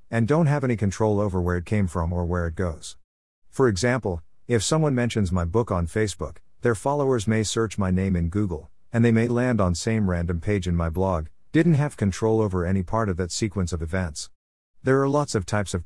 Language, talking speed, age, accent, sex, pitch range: English, 225 wpm, 50-69, American, male, 85-120 Hz